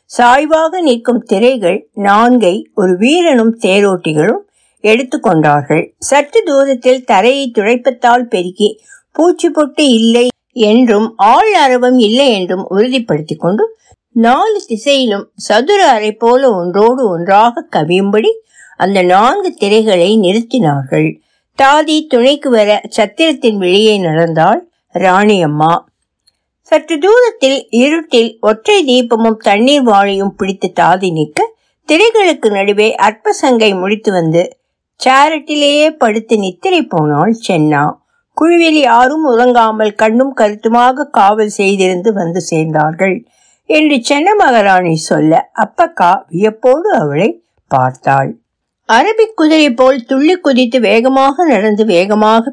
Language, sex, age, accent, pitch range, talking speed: Tamil, female, 60-79, native, 195-285 Hz, 90 wpm